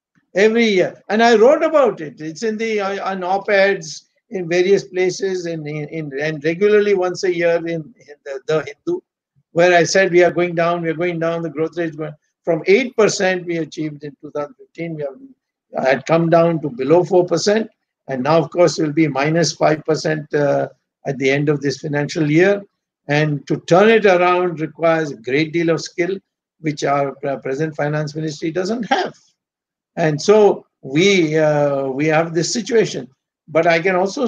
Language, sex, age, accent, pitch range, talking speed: Hindi, male, 60-79, native, 155-190 Hz, 190 wpm